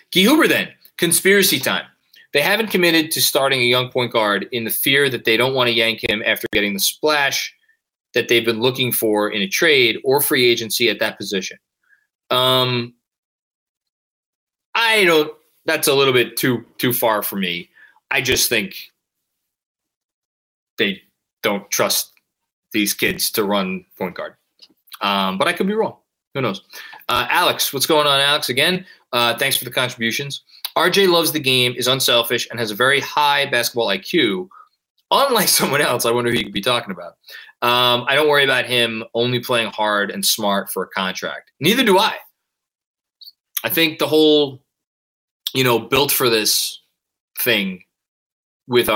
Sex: male